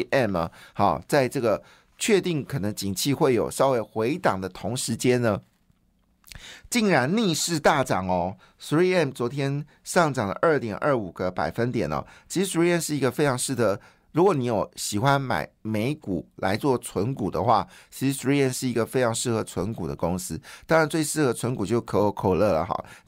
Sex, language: male, Chinese